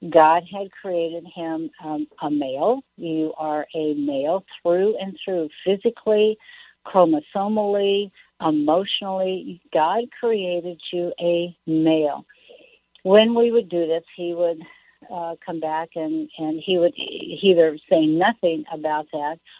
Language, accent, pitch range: English, American, 160-200 Hz